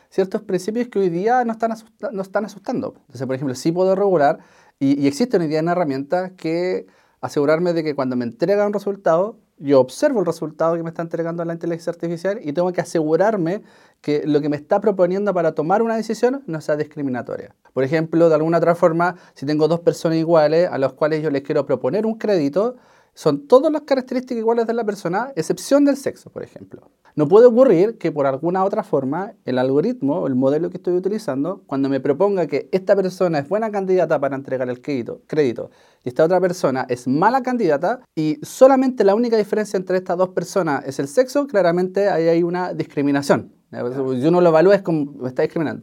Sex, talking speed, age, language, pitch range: male, 200 wpm, 30-49, Spanish, 155-205 Hz